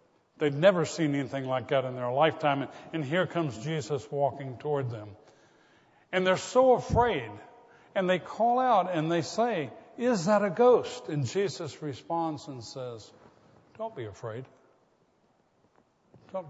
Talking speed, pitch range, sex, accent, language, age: 150 wpm, 130-165 Hz, male, American, English, 60-79